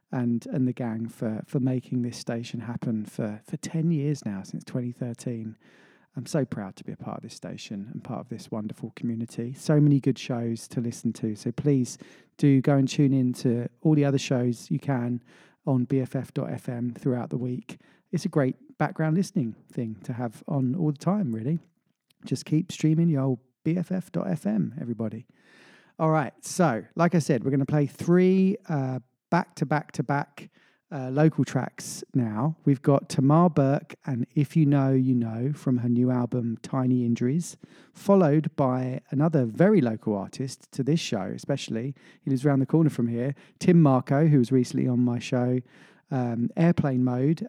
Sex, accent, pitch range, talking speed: male, British, 125-155 Hz, 180 wpm